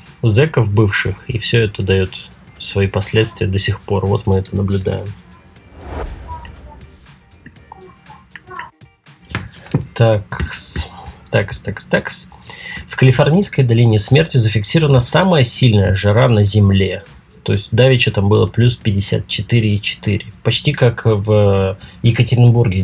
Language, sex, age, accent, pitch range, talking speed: Russian, male, 20-39, native, 95-120 Hz, 110 wpm